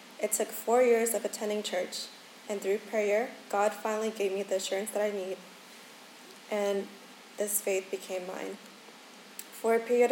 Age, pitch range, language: 20-39, 195-230 Hz, English